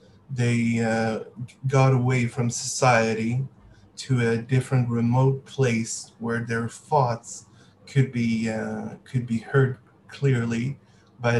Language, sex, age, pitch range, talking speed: English, male, 20-39, 115-135 Hz, 115 wpm